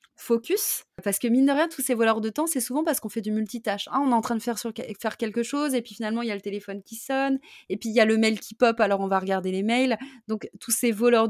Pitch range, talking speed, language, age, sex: 190-245 Hz, 310 wpm, French, 20-39, female